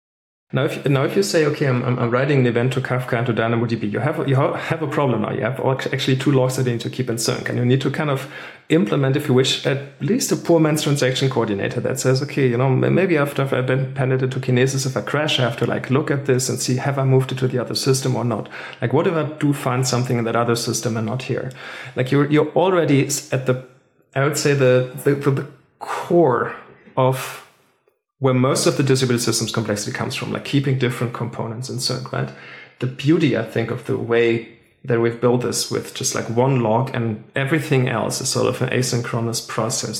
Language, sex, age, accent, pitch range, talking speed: English, male, 40-59, German, 120-135 Hz, 235 wpm